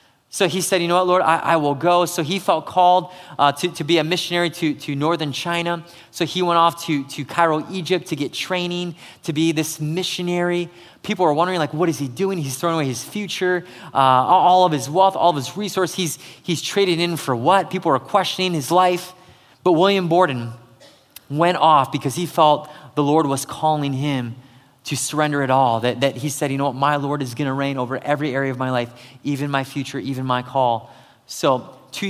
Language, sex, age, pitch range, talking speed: English, male, 20-39, 135-175 Hz, 220 wpm